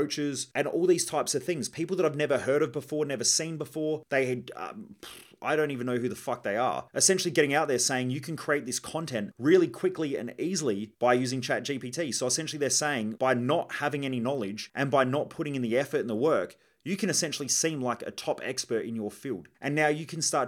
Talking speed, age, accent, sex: 235 wpm, 30-49, Australian, male